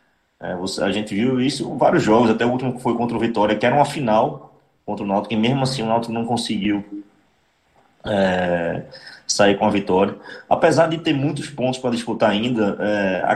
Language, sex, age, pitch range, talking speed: Portuguese, male, 20-39, 105-130 Hz, 190 wpm